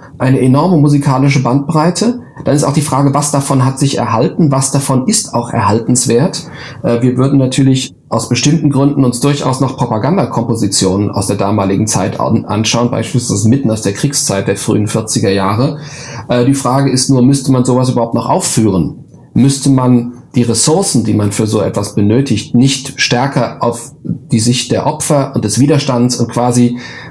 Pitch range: 120-145 Hz